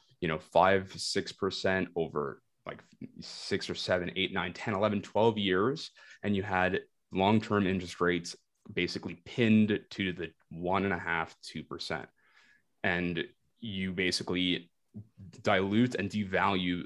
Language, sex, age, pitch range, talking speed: English, male, 20-39, 90-115 Hz, 135 wpm